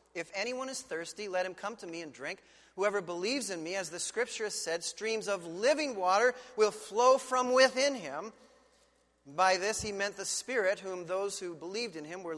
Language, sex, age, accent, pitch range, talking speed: English, male, 40-59, American, 210-275 Hz, 205 wpm